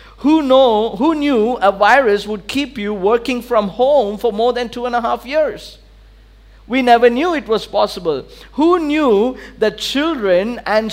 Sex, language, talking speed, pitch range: male, English, 170 wpm, 210-260 Hz